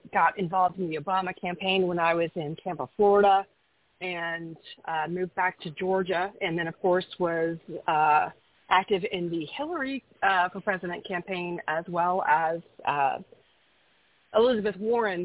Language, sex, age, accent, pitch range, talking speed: English, female, 30-49, American, 175-205 Hz, 150 wpm